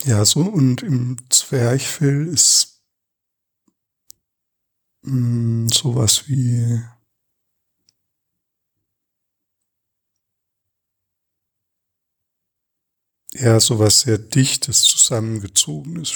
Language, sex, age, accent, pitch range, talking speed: German, male, 60-79, German, 105-135 Hz, 50 wpm